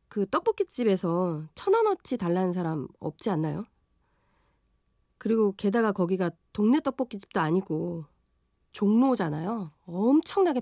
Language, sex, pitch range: Korean, female, 160-245 Hz